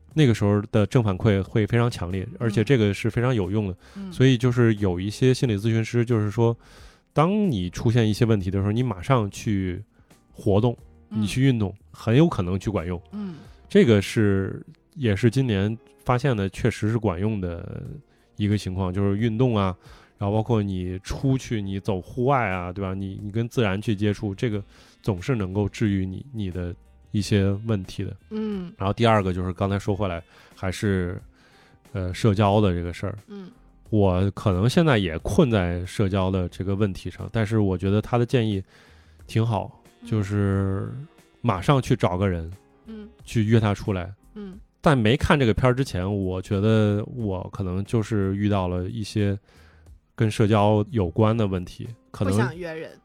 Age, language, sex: 20-39, Chinese, male